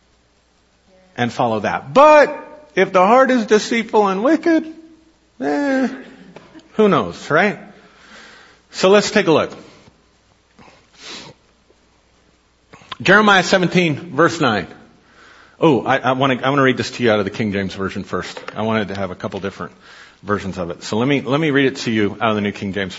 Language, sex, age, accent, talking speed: English, male, 50-69, American, 170 wpm